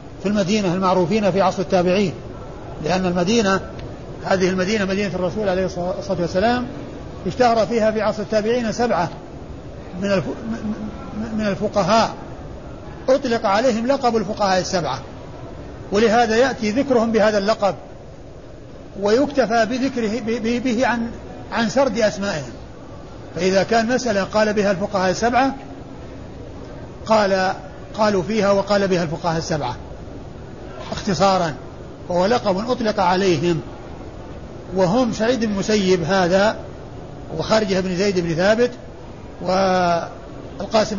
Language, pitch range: Arabic, 180-220 Hz